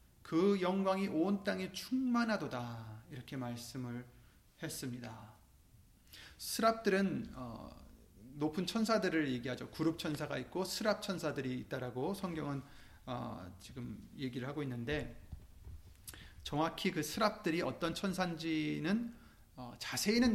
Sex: male